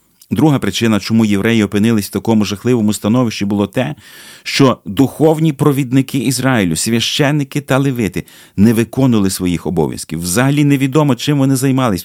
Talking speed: 135 wpm